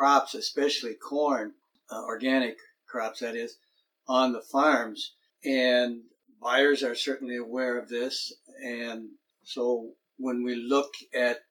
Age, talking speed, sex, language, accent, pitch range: 60-79, 125 wpm, male, English, American, 120-140 Hz